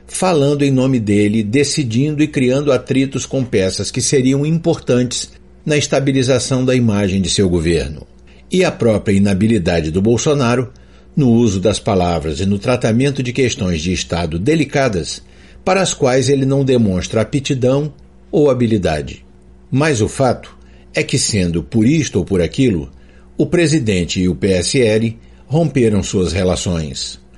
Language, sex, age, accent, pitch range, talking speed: Portuguese, male, 60-79, Brazilian, 90-145 Hz, 145 wpm